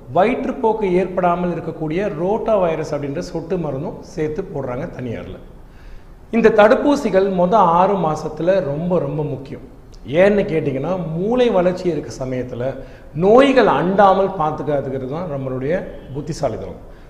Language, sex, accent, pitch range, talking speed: Tamil, male, native, 145-195 Hz, 105 wpm